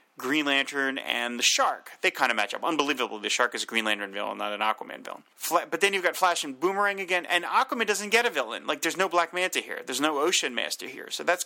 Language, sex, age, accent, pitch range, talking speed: English, male, 30-49, American, 120-180 Hz, 255 wpm